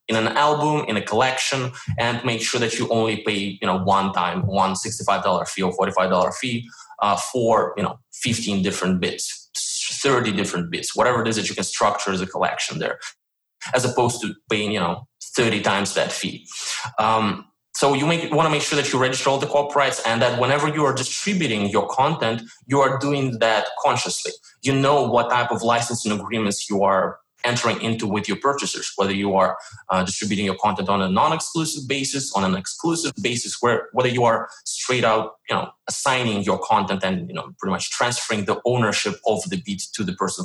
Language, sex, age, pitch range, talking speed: English, male, 20-39, 100-135 Hz, 205 wpm